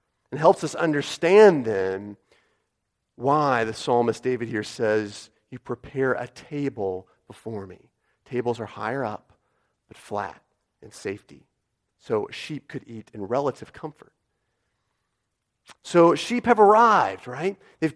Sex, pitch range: male, 120-170 Hz